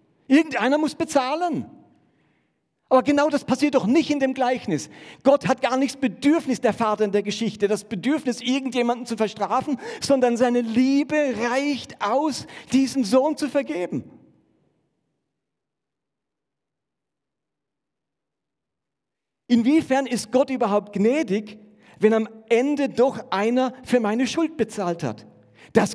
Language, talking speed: German, 120 wpm